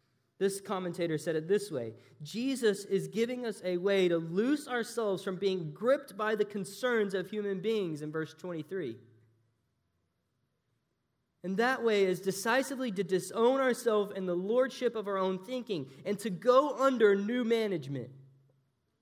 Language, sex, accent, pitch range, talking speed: English, male, American, 125-205 Hz, 150 wpm